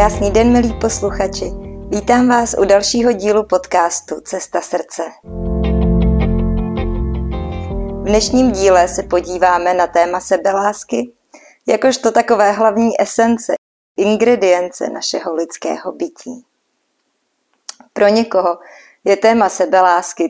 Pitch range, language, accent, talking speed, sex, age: 180-225 Hz, Czech, native, 100 wpm, female, 30-49